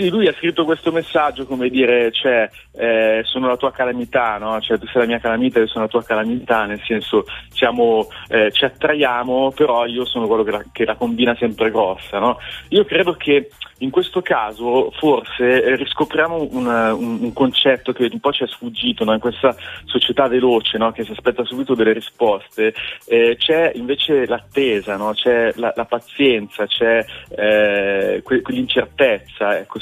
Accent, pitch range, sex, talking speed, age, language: native, 110-130 Hz, male, 180 wpm, 30-49, Italian